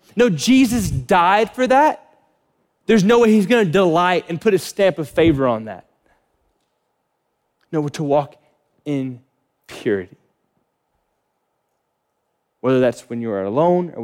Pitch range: 125-180 Hz